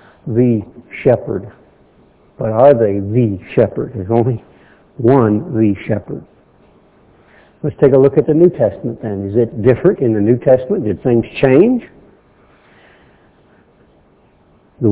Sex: male